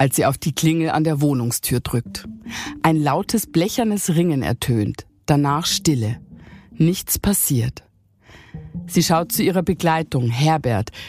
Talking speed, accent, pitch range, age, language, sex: 130 wpm, German, 135-185 Hz, 50-69, German, female